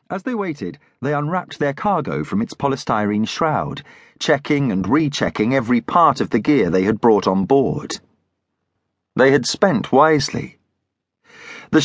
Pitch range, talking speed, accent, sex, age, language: 130-170 Hz, 145 wpm, British, male, 40-59, English